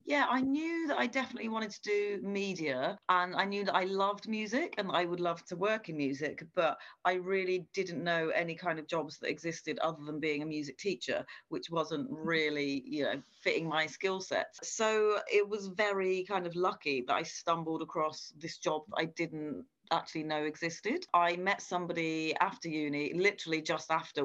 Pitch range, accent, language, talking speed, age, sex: 155-195 Hz, British, English, 190 wpm, 30-49, female